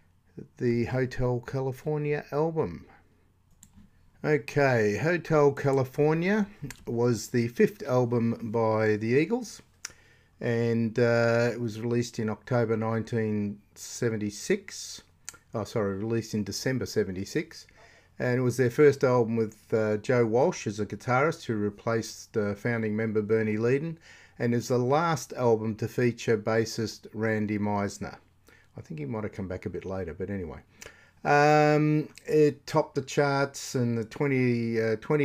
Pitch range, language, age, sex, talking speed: 105-130 Hz, English, 50-69, male, 135 wpm